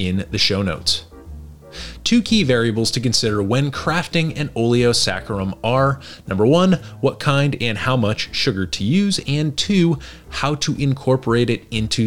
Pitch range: 100-135 Hz